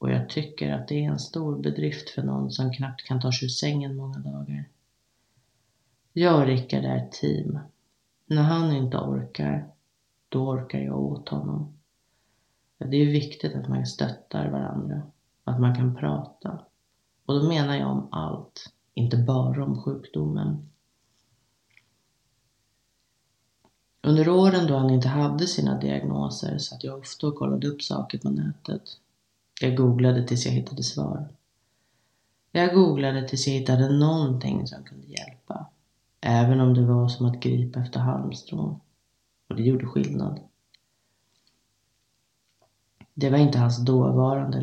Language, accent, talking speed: Swedish, native, 140 wpm